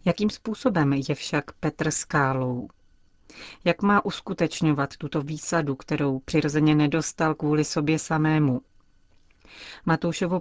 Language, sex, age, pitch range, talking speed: Czech, female, 30-49, 145-170 Hz, 105 wpm